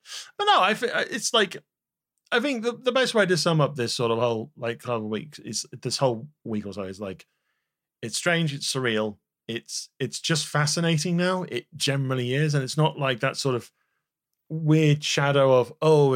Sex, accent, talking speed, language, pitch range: male, British, 200 wpm, English, 110-140 Hz